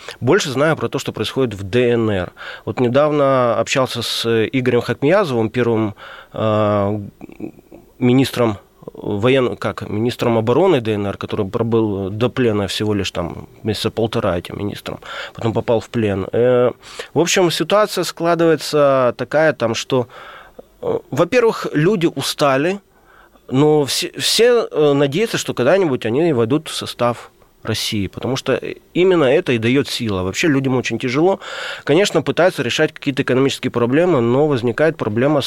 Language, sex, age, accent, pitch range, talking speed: Russian, male, 30-49, native, 110-145 Hz, 130 wpm